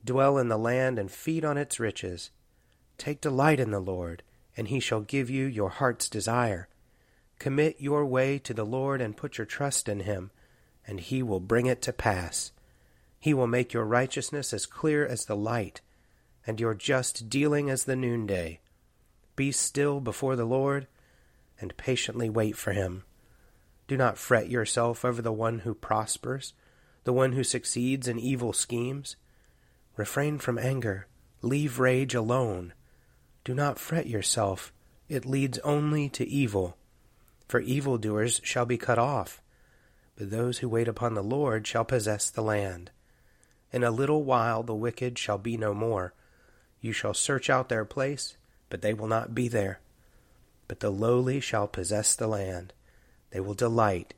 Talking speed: 165 wpm